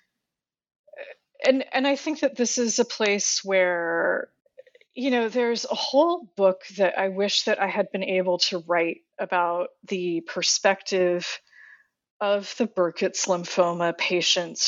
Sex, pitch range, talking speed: female, 180-230 Hz, 140 wpm